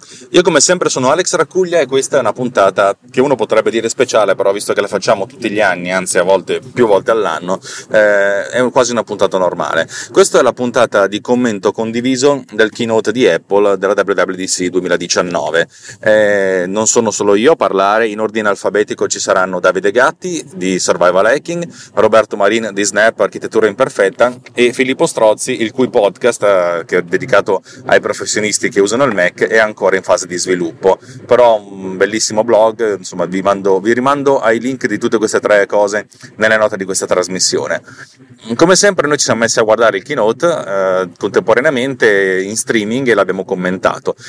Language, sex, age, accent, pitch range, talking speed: Italian, male, 30-49, native, 95-125 Hz, 175 wpm